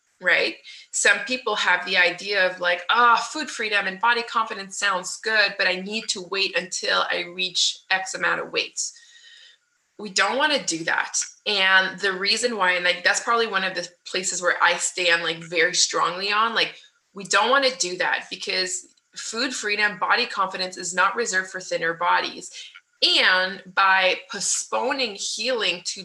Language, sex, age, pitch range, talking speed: English, female, 20-39, 175-225 Hz, 175 wpm